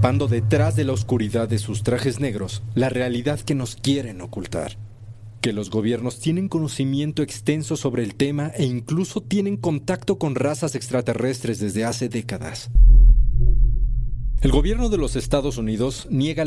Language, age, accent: Spanish, 40-59, Mexican